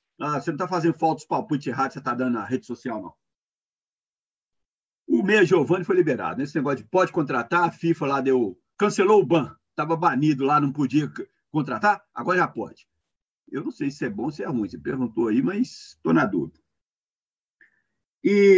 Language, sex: Portuguese, male